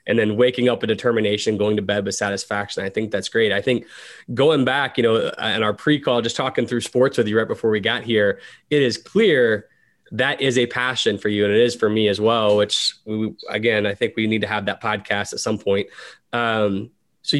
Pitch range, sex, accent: 110-145 Hz, male, American